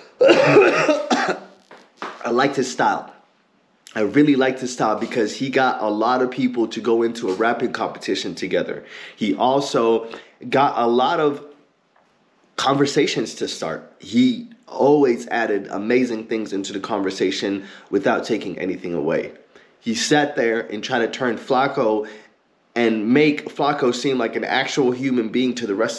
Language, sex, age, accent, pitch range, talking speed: English, male, 20-39, American, 115-140 Hz, 150 wpm